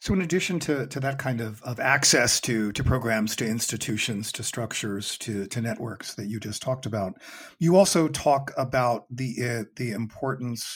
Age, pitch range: 40-59, 120-170 Hz